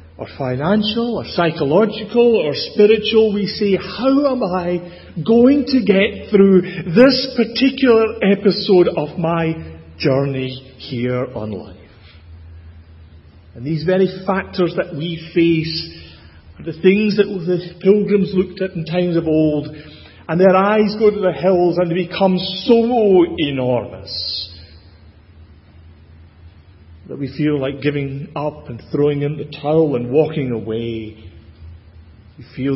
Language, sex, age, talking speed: English, male, 40-59, 130 wpm